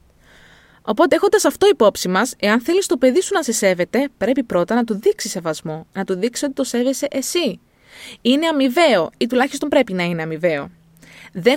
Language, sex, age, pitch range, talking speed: Greek, female, 20-39, 205-290 Hz, 180 wpm